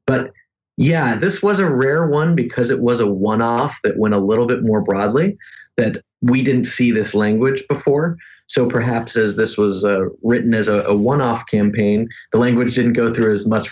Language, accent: English, American